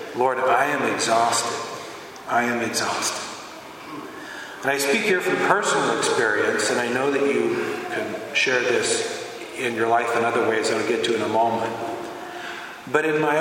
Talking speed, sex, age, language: 170 wpm, male, 40-59, English